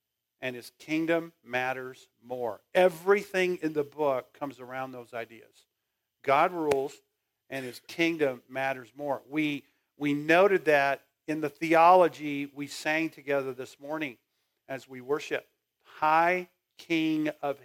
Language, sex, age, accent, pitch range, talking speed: English, male, 50-69, American, 145-205 Hz, 130 wpm